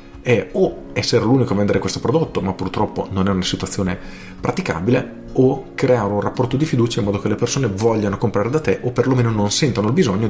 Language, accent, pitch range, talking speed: Italian, native, 95-120 Hz, 210 wpm